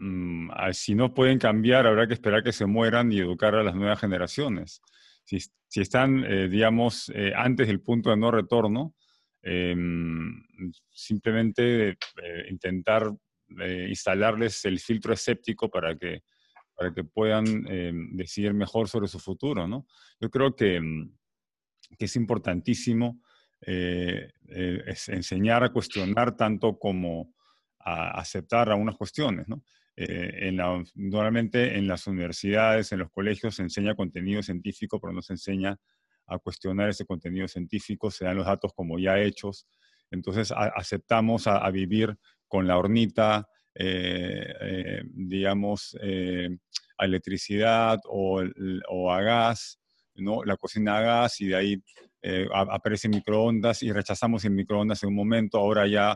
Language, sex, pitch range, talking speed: Spanish, male, 95-110 Hz, 150 wpm